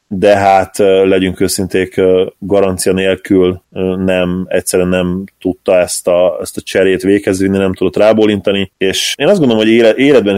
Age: 20-39